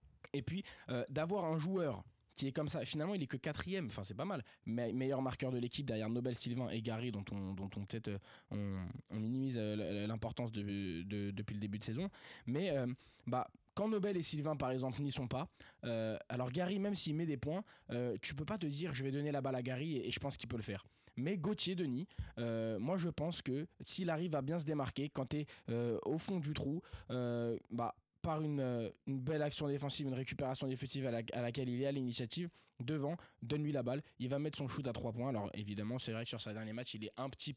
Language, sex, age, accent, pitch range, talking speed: French, male, 20-39, French, 115-150 Hz, 245 wpm